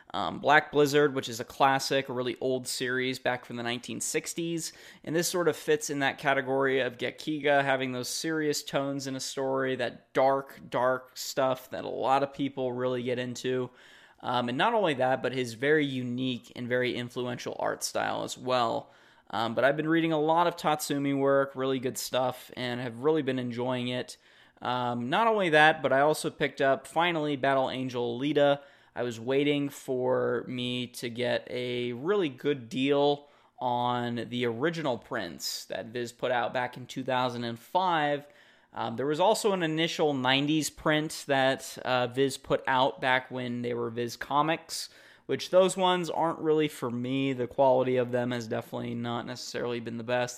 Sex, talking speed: male, 180 wpm